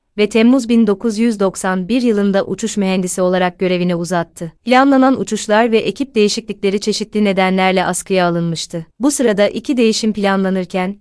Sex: female